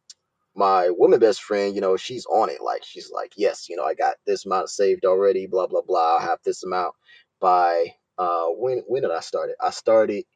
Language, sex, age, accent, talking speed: English, male, 20-39, American, 220 wpm